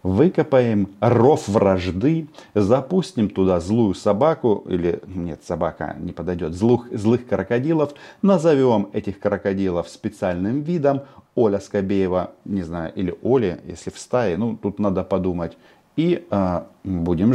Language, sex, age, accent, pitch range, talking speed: Russian, male, 40-59, native, 90-130 Hz, 120 wpm